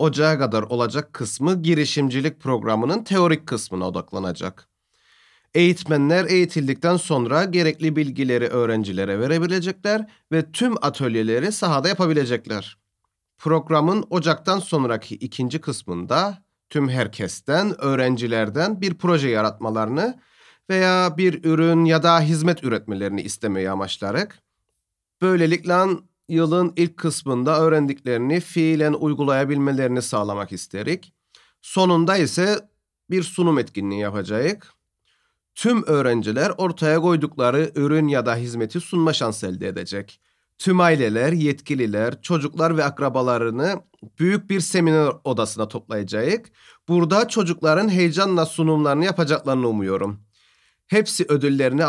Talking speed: 100 wpm